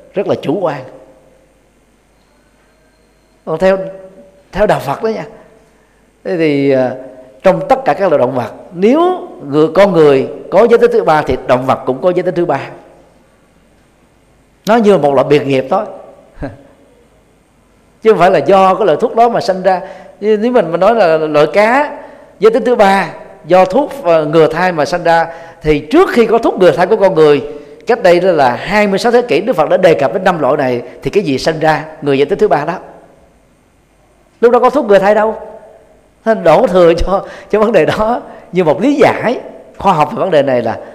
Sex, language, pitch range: male, Vietnamese, 155-215 Hz